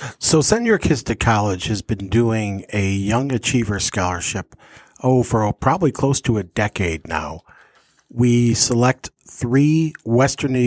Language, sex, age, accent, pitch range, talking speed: English, male, 50-69, American, 105-125 Hz, 140 wpm